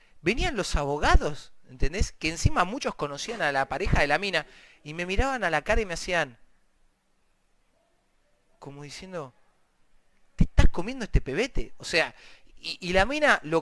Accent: Argentinian